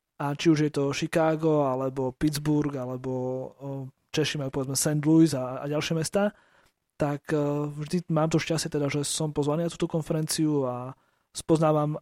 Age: 20-39